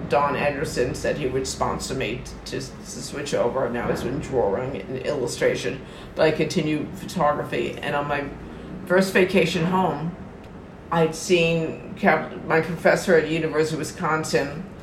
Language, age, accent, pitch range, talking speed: English, 50-69, American, 145-175 Hz, 150 wpm